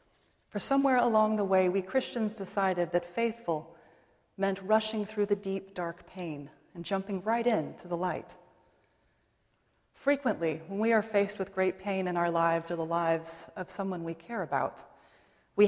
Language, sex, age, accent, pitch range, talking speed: English, female, 30-49, American, 170-210 Hz, 165 wpm